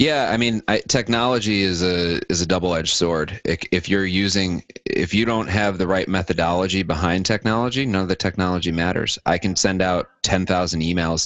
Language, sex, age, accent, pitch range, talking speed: English, male, 30-49, American, 80-95 Hz, 180 wpm